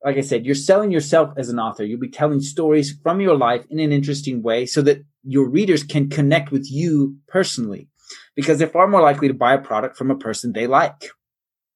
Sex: male